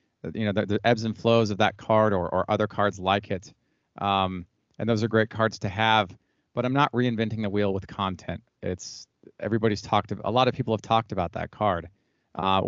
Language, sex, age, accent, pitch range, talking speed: English, male, 30-49, American, 100-125 Hz, 220 wpm